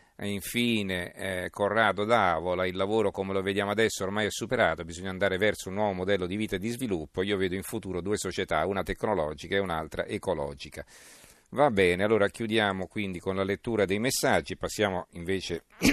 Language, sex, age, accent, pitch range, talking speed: Italian, male, 40-59, native, 90-105 Hz, 180 wpm